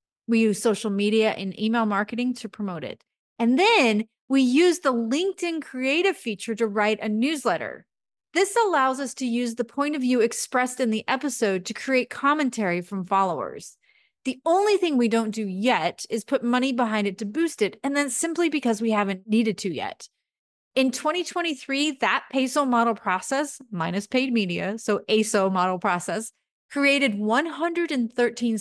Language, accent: English, American